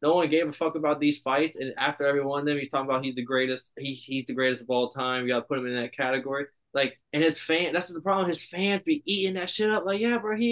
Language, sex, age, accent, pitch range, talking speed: English, male, 20-39, American, 125-160 Hz, 300 wpm